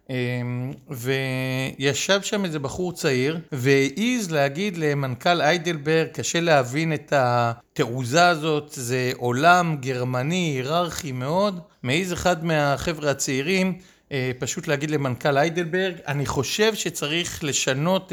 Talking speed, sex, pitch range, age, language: 105 wpm, male, 130-170 Hz, 50-69, Hebrew